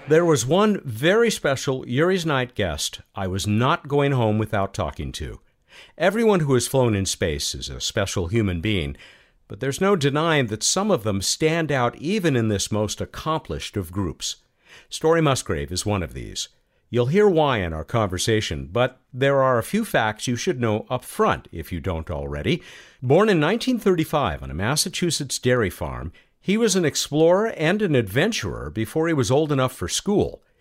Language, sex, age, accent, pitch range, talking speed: English, male, 50-69, American, 100-160 Hz, 180 wpm